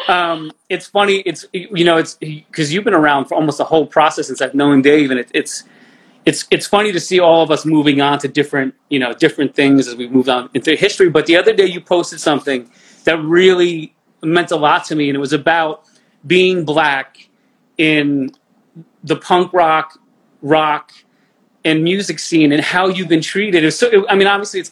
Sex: male